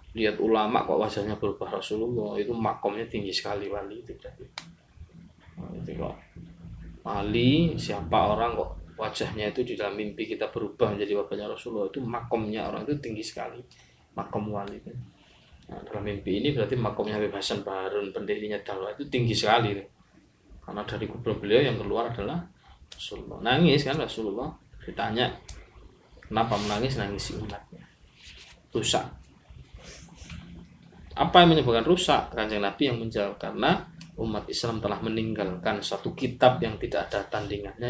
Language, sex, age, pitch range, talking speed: Malay, male, 20-39, 100-115 Hz, 140 wpm